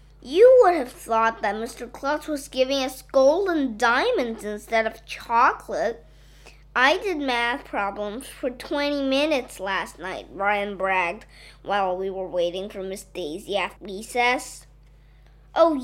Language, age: Chinese, 20-39